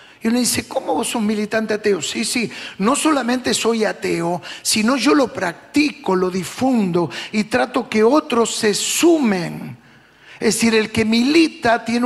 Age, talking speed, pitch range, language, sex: 50-69, 160 wpm, 185-230 Hz, Spanish, male